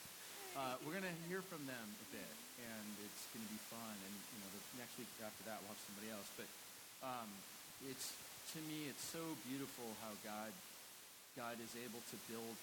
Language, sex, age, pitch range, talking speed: English, male, 40-59, 110-140 Hz, 200 wpm